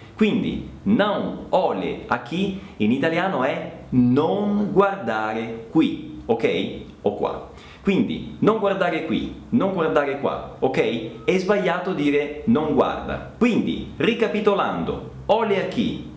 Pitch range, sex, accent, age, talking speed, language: 155-230 Hz, male, native, 40-59, 120 wpm, Italian